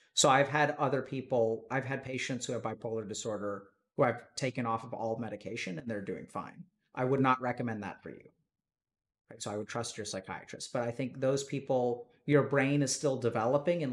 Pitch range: 120-150 Hz